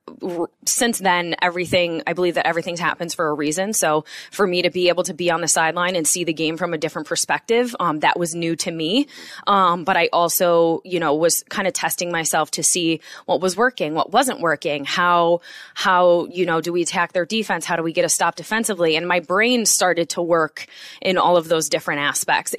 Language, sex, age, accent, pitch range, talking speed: English, female, 20-39, American, 160-185 Hz, 220 wpm